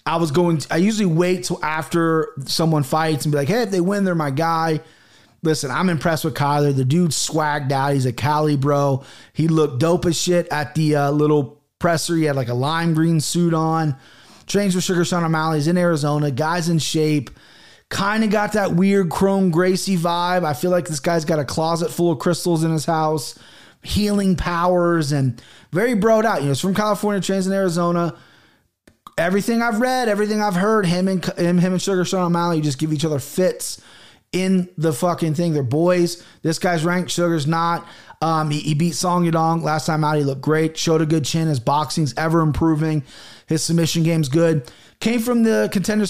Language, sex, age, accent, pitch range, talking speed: English, male, 30-49, American, 155-180 Hz, 205 wpm